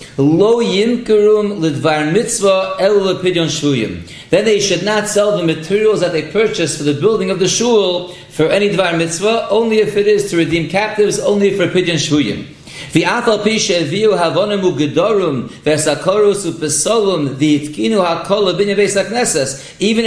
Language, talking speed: English, 100 wpm